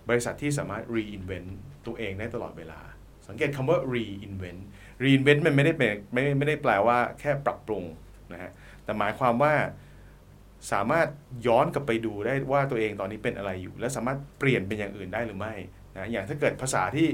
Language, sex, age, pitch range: Thai, male, 30-49, 100-135 Hz